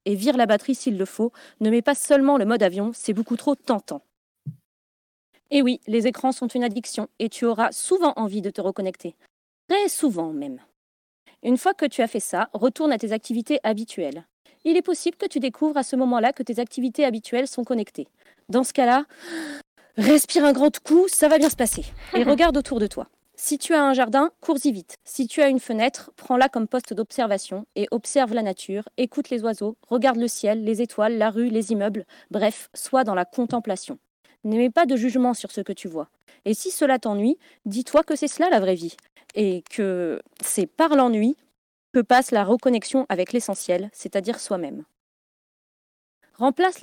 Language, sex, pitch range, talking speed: French, female, 215-280 Hz, 195 wpm